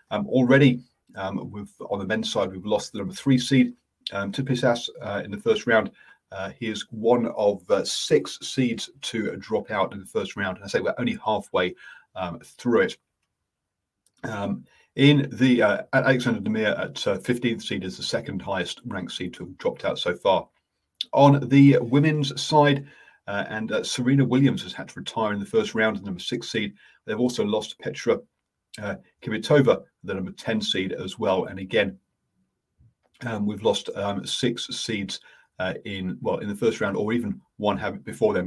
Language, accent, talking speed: English, British, 190 wpm